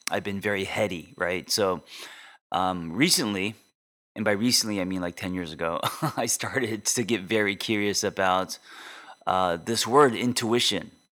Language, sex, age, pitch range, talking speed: English, male, 30-49, 95-115 Hz, 150 wpm